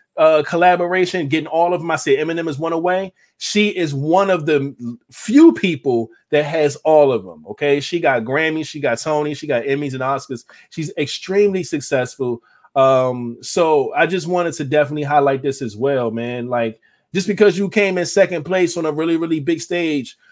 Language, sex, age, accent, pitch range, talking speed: English, male, 20-39, American, 130-175 Hz, 190 wpm